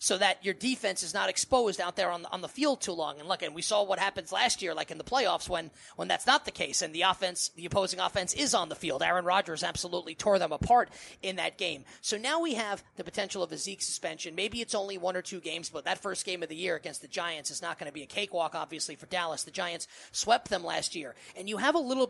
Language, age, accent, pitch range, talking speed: English, 30-49, American, 175-220 Hz, 275 wpm